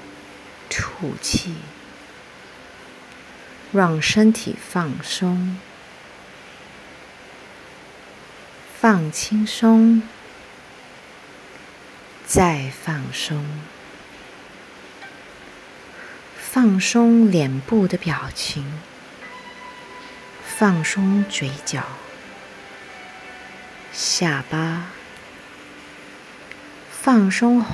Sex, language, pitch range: female, English, 150-215 Hz